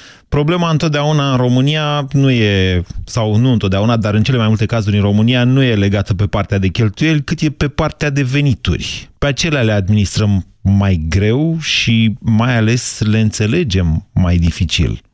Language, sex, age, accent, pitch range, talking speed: Romanian, male, 30-49, native, 100-145 Hz, 170 wpm